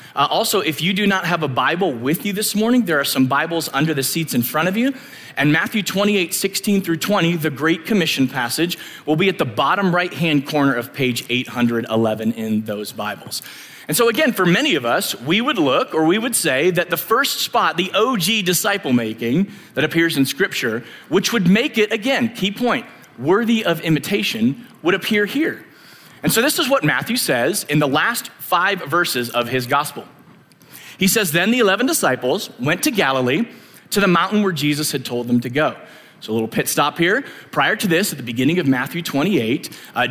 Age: 30-49